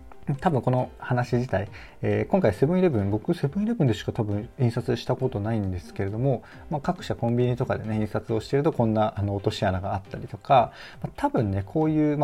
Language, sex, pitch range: Japanese, male, 100-130 Hz